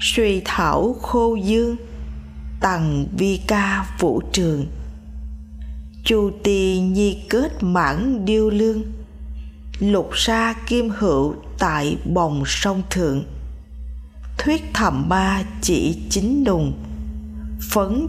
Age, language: 20-39, Vietnamese